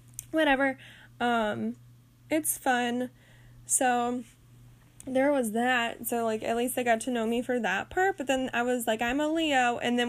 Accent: American